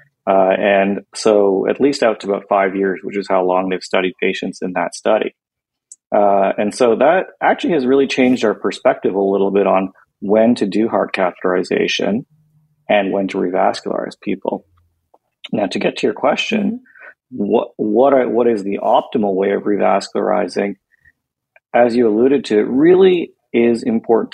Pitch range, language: 95-120 Hz, English